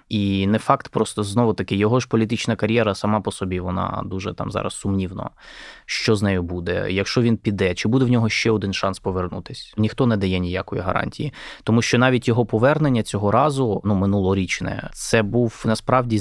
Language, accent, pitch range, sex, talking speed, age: Ukrainian, native, 95-125 Hz, male, 185 wpm, 20-39